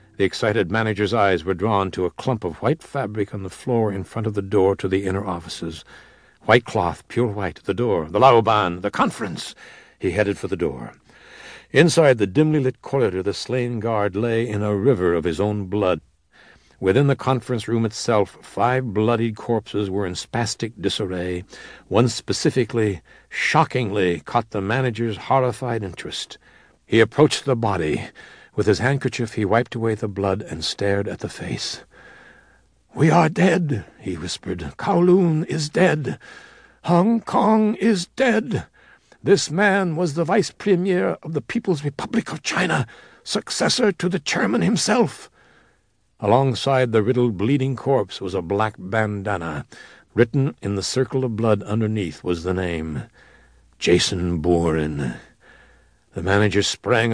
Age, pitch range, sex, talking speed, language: 60-79, 100-145 Hz, male, 150 wpm, English